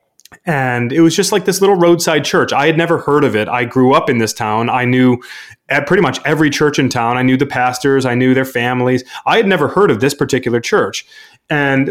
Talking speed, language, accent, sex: 235 wpm, English, American, male